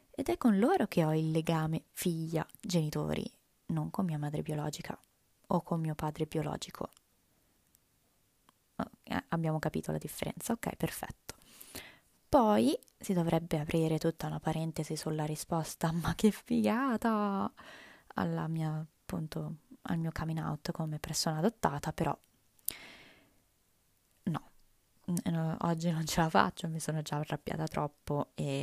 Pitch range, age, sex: 150-190 Hz, 20-39, female